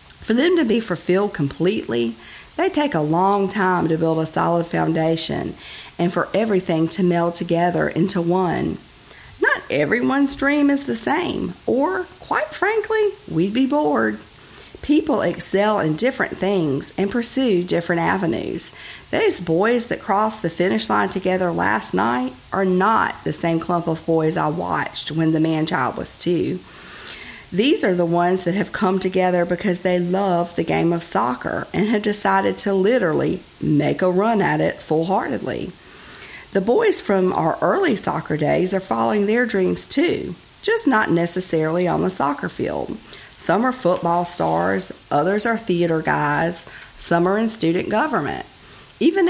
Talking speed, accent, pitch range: 155 wpm, American, 165-220 Hz